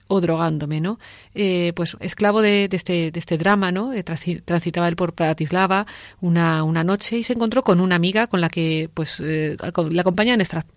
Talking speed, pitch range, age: 200 wpm, 170-210 Hz, 40-59